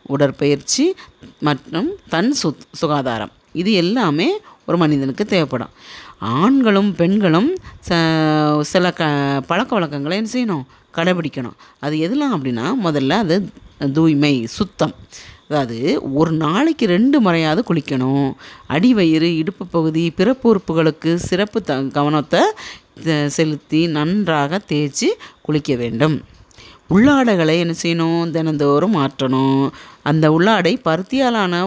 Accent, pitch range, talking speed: native, 145-195 Hz, 100 wpm